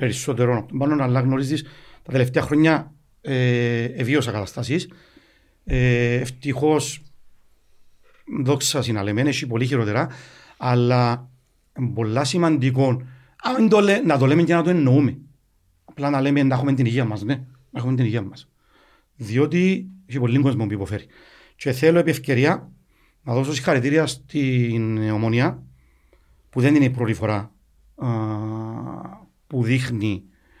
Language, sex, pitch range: Greek, male, 115-155 Hz